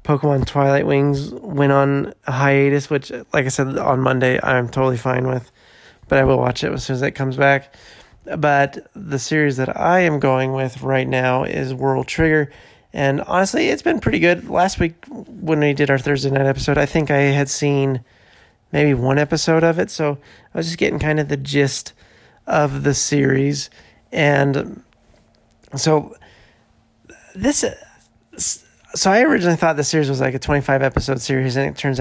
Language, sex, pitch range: English, male, 130-150 Hz